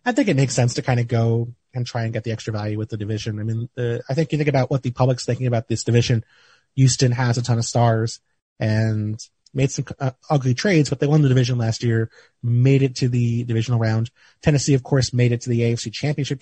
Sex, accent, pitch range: male, American, 115-135 Hz